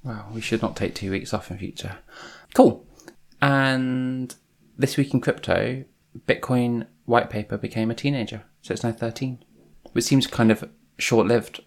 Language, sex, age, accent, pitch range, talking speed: English, male, 20-39, British, 90-110 Hz, 160 wpm